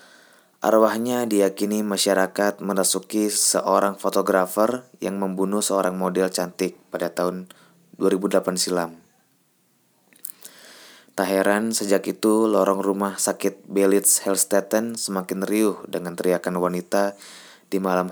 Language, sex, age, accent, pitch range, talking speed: Indonesian, male, 20-39, native, 95-110 Hz, 105 wpm